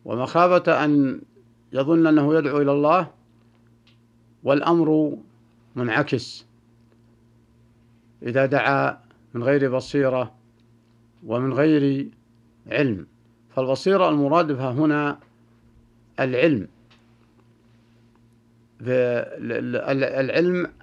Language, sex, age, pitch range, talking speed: Arabic, male, 50-69, 115-140 Hz, 65 wpm